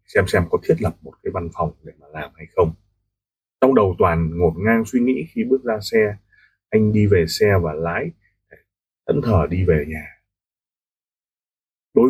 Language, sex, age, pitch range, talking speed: Vietnamese, male, 20-39, 95-130 Hz, 185 wpm